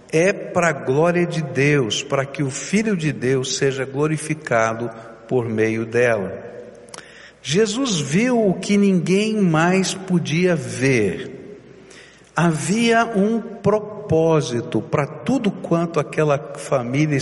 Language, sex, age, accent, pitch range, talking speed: Portuguese, male, 60-79, Brazilian, 150-215 Hz, 115 wpm